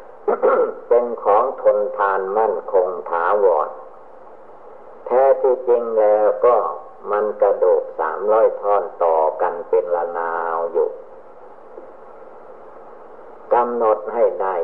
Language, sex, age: Thai, male, 50-69